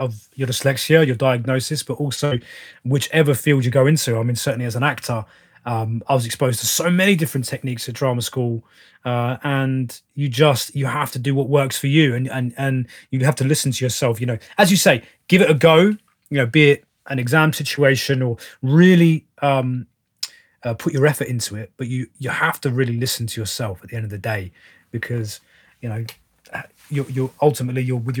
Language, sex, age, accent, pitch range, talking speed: English, male, 30-49, British, 120-140 Hz, 210 wpm